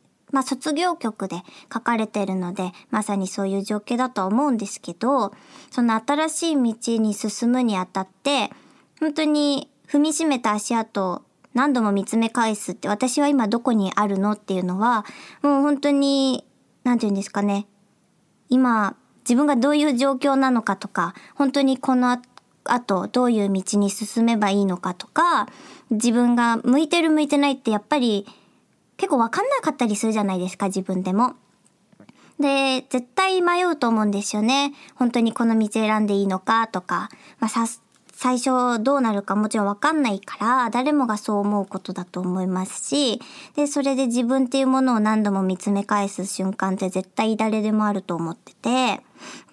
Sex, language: male, Japanese